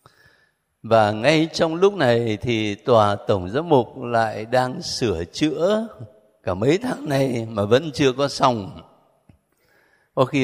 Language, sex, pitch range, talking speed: Vietnamese, male, 95-125 Hz, 145 wpm